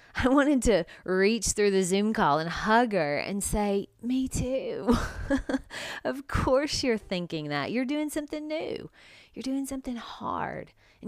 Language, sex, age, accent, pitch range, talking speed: English, female, 30-49, American, 195-260 Hz, 155 wpm